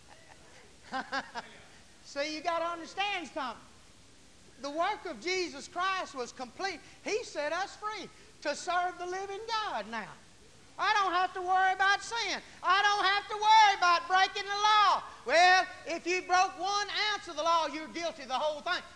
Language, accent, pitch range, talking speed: English, American, 290-385 Hz, 170 wpm